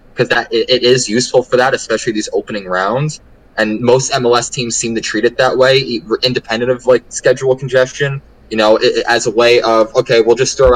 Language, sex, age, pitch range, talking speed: English, male, 20-39, 105-150 Hz, 195 wpm